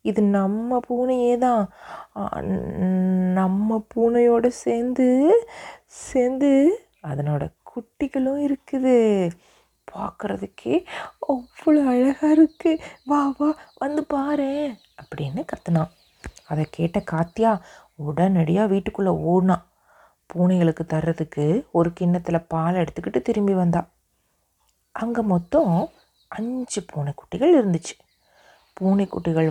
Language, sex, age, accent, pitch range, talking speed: Tamil, female, 30-49, native, 165-240 Hz, 85 wpm